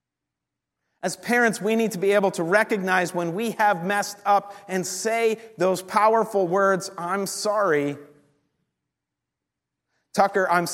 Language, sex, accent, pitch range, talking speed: English, male, American, 155-195 Hz, 130 wpm